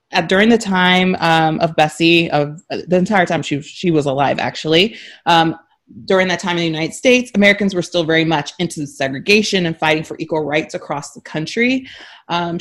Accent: American